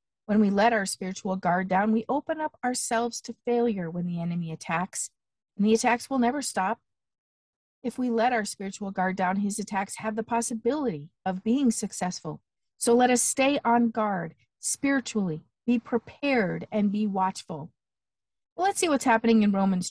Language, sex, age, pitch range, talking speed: English, female, 50-69, 190-240 Hz, 170 wpm